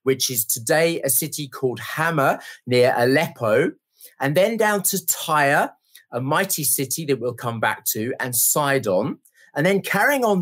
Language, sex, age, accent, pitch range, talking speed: English, male, 40-59, British, 135-195 Hz, 160 wpm